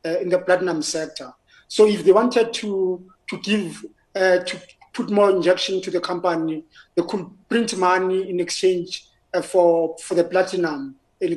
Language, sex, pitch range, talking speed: English, male, 180-220 Hz, 170 wpm